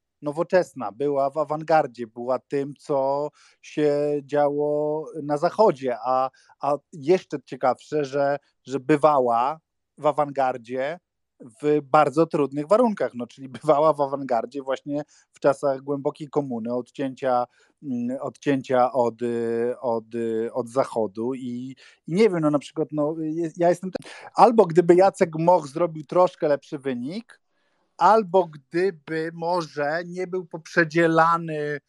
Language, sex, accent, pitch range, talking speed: Polish, male, native, 145-180 Hz, 120 wpm